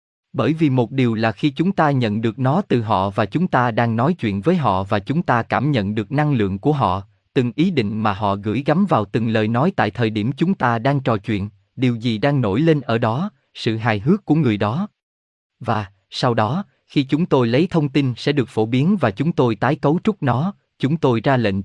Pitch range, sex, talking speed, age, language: 110-155 Hz, male, 240 wpm, 20-39, Vietnamese